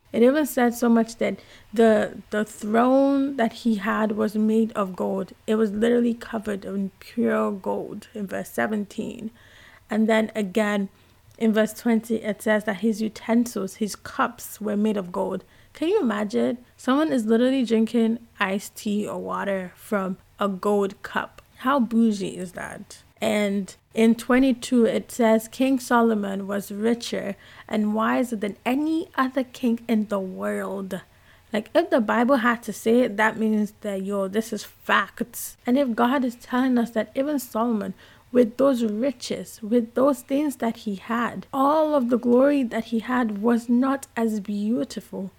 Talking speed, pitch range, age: 165 wpm, 210-245 Hz, 20-39